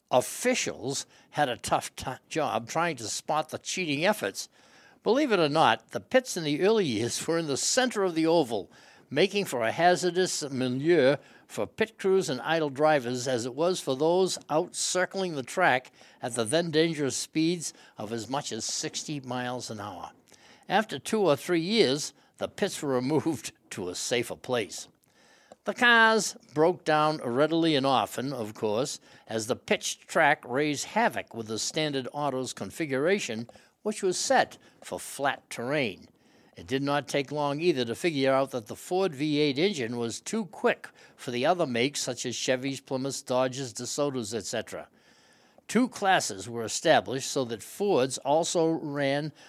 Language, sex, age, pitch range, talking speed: English, male, 60-79, 130-175 Hz, 165 wpm